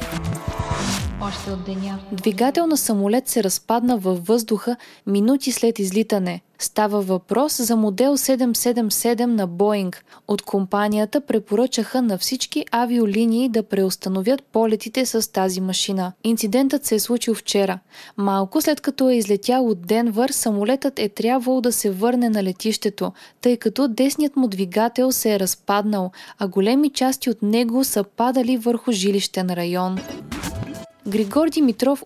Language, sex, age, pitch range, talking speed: Bulgarian, female, 20-39, 200-250 Hz, 130 wpm